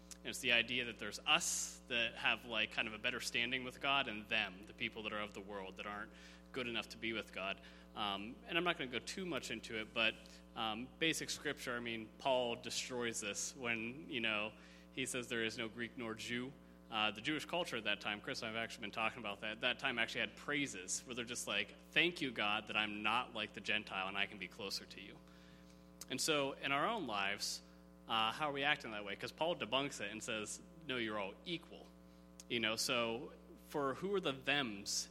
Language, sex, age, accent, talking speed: English, male, 30-49, American, 235 wpm